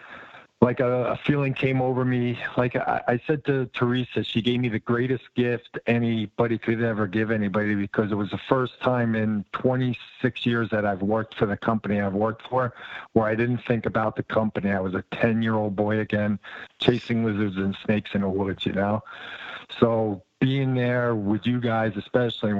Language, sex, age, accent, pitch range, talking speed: English, male, 50-69, American, 105-125 Hz, 190 wpm